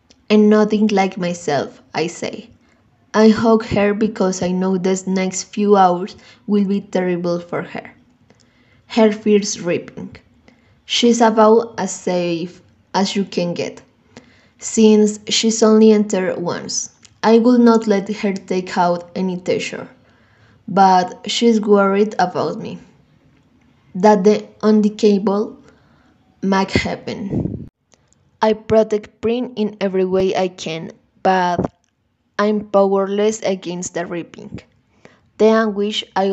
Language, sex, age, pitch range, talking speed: Spanish, female, 20-39, 180-215 Hz, 125 wpm